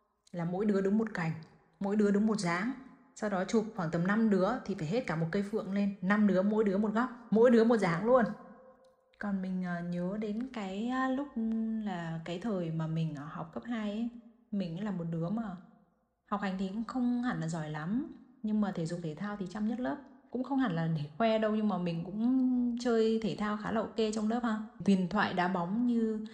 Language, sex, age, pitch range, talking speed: Vietnamese, female, 10-29, 180-225 Hz, 230 wpm